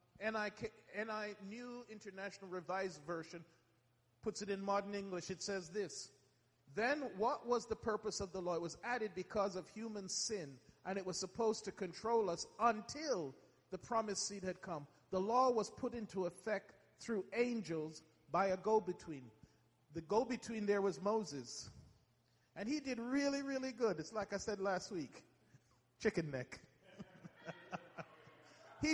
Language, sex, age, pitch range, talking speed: English, male, 40-59, 160-225 Hz, 150 wpm